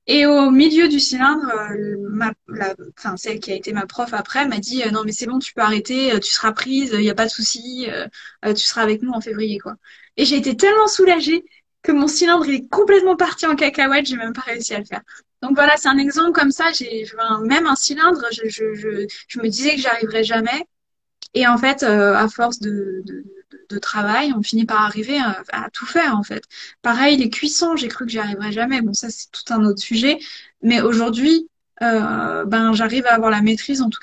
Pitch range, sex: 215-280 Hz, female